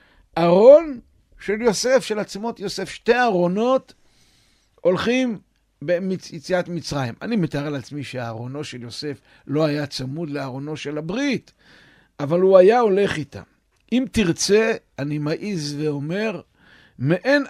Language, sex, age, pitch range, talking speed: Hebrew, male, 60-79, 135-205 Hz, 115 wpm